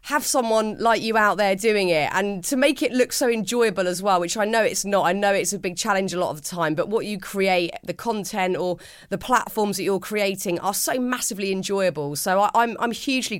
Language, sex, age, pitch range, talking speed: English, female, 30-49, 175-230 Hz, 240 wpm